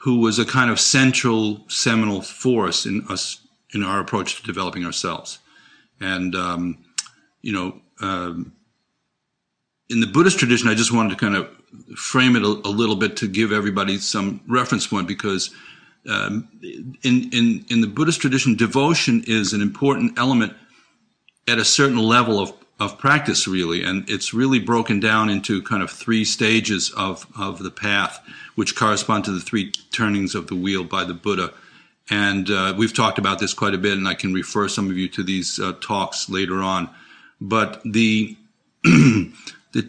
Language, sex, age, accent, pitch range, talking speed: English, male, 50-69, American, 95-120 Hz, 175 wpm